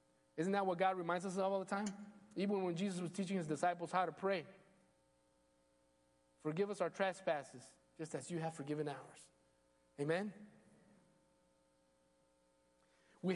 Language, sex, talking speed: English, male, 145 wpm